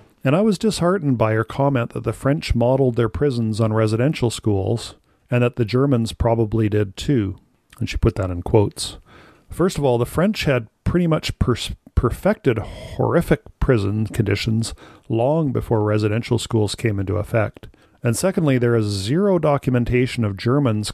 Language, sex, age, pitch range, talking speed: English, male, 40-59, 110-135 Hz, 160 wpm